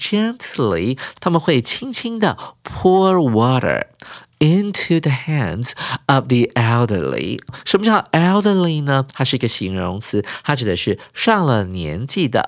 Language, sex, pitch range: Chinese, male, 115-170 Hz